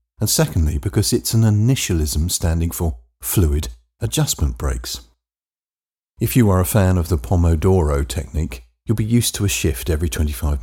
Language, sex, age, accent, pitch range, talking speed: English, male, 50-69, British, 75-105 Hz, 160 wpm